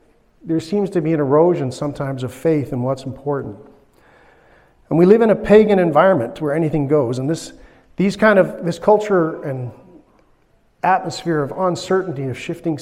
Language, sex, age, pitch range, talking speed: English, male, 50-69, 135-180 Hz, 165 wpm